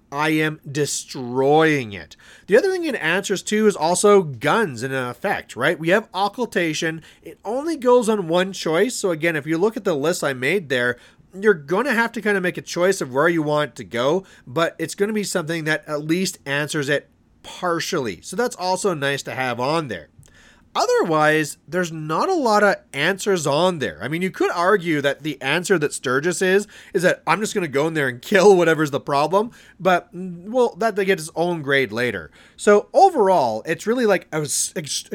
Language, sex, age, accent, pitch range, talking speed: English, male, 30-49, American, 150-205 Hz, 205 wpm